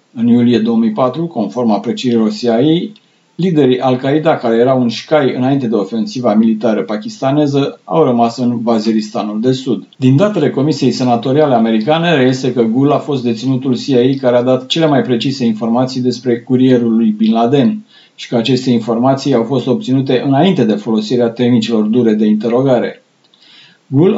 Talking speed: 155 wpm